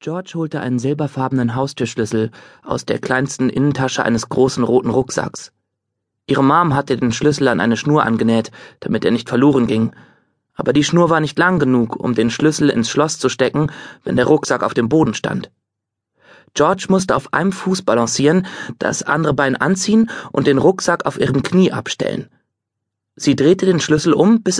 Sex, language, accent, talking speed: male, German, German, 175 wpm